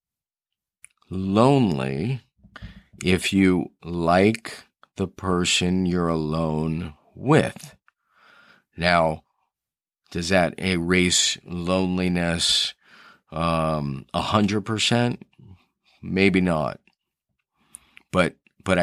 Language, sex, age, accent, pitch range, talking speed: English, male, 40-59, American, 85-100 Hz, 65 wpm